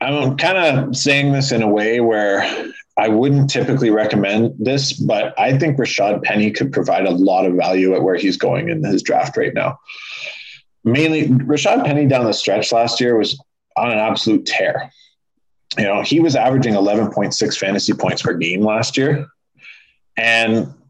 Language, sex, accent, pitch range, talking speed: English, male, American, 105-140 Hz, 170 wpm